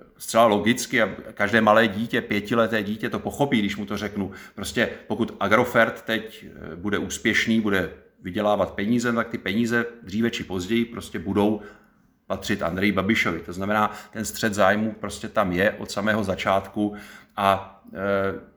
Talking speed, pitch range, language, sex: 150 wpm, 100-115 Hz, Czech, male